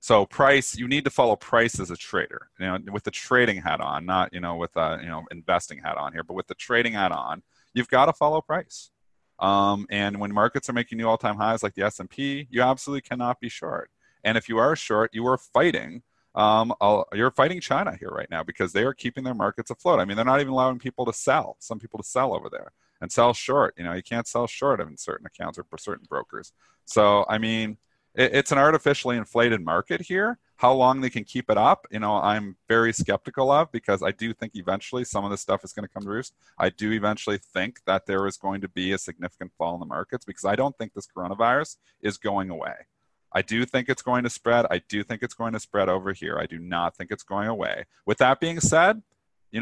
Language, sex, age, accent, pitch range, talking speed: English, male, 30-49, American, 100-130 Hz, 240 wpm